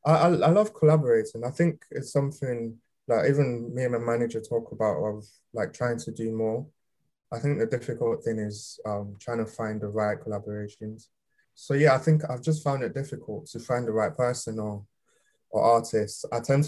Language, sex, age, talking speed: English, male, 20-39, 195 wpm